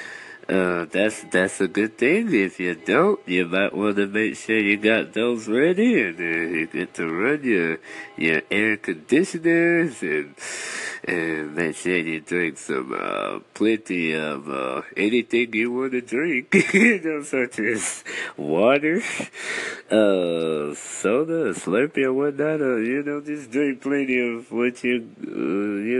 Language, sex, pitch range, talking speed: English, male, 100-150 Hz, 150 wpm